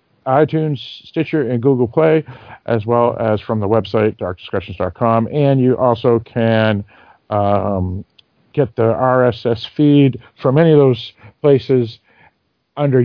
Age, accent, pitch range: 50-69, American, 110-140 Hz